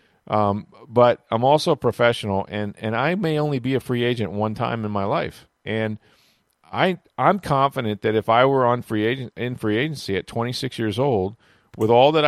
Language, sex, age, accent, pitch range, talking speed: English, male, 40-59, American, 110-135 Hz, 200 wpm